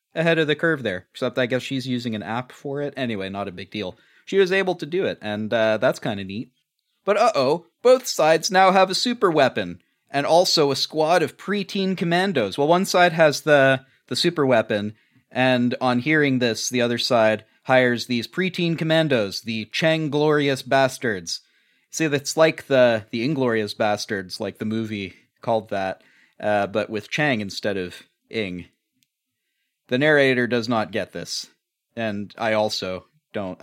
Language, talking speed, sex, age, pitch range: English, 180 wpm, male, 30-49, 115-160 Hz